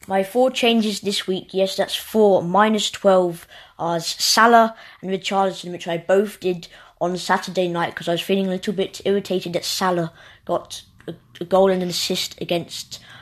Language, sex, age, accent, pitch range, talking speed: English, female, 20-39, British, 170-195 Hz, 175 wpm